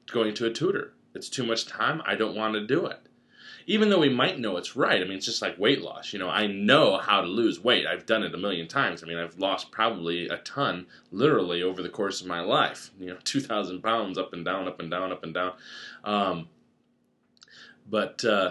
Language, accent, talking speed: English, American, 230 wpm